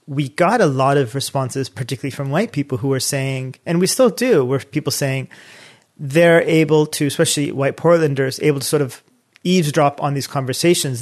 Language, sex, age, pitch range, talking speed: English, male, 30-49, 130-155 Hz, 185 wpm